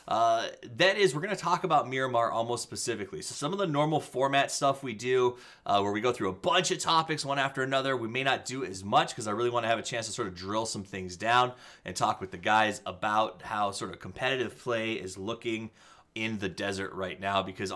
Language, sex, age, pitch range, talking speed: English, male, 20-39, 105-160 Hz, 245 wpm